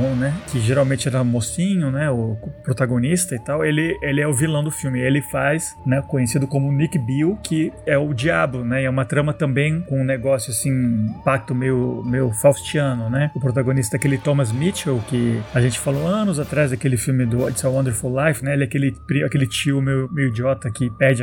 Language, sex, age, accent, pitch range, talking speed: Portuguese, male, 30-49, Brazilian, 130-150 Hz, 205 wpm